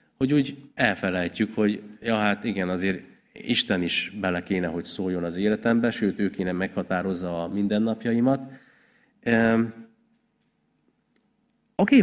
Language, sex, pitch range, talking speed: Hungarian, male, 95-120 Hz, 125 wpm